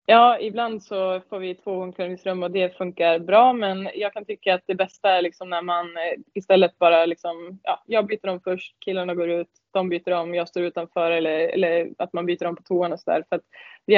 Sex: female